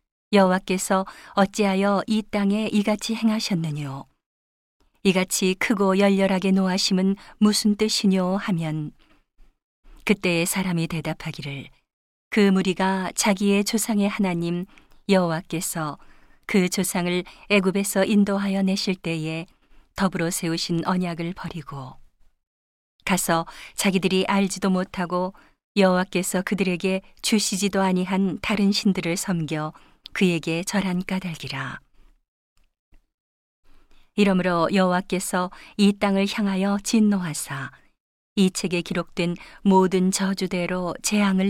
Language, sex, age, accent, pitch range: Korean, female, 40-59, native, 170-200 Hz